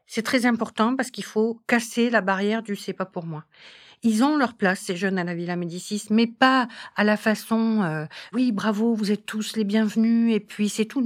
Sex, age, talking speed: female, 50-69, 235 wpm